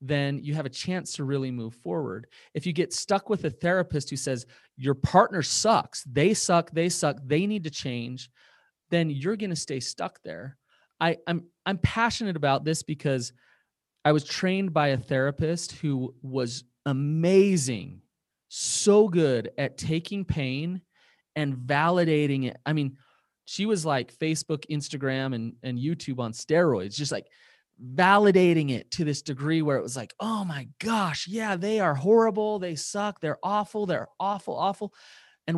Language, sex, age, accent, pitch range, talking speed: English, male, 30-49, American, 135-180 Hz, 165 wpm